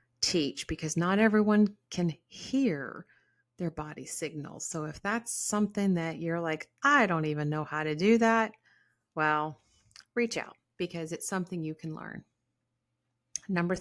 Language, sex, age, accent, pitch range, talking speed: English, female, 30-49, American, 150-210 Hz, 150 wpm